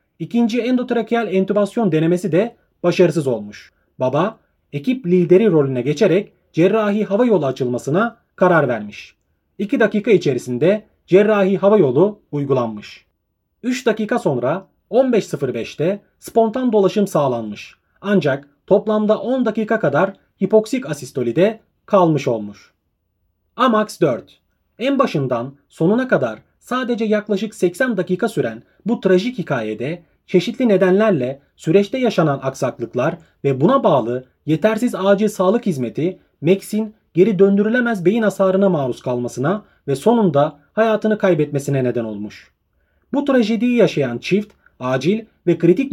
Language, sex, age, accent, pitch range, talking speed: Turkish, male, 30-49, native, 145-215 Hz, 115 wpm